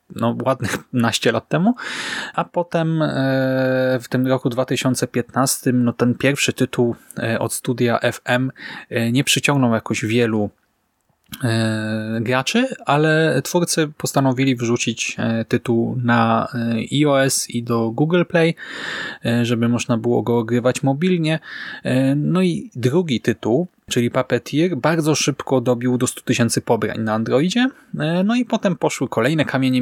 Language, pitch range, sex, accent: Polish, 120-145 Hz, male, native